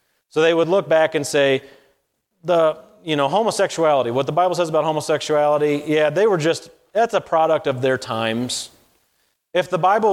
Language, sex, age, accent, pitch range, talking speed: English, male, 30-49, American, 135-175 Hz, 180 wpm